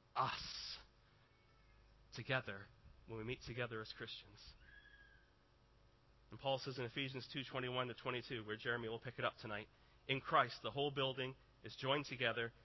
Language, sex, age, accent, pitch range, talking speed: English, male, 30-49, American, 115-140 Hz, 145 wpm